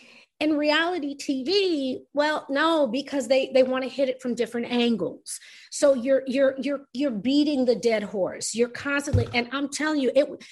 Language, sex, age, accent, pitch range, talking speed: English, female, 40-59, American, 195-270 Hz, 175 wpm